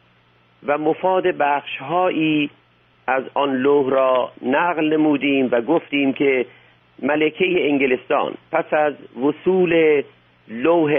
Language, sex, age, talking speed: Persian, male, 50-69, 100 wpm